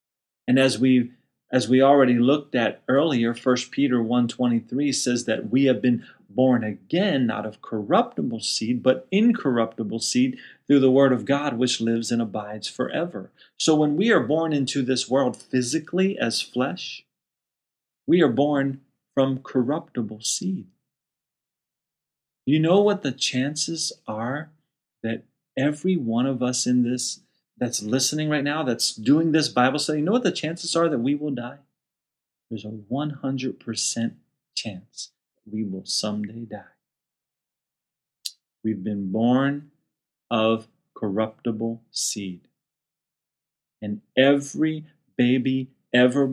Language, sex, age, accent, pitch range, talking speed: English, male, 30-49, American, 115-145 Hz, 135 wpm